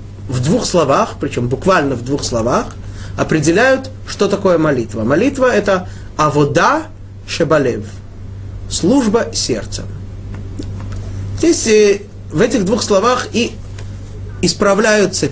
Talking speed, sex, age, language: 110 wpm, male, 30-49, Russian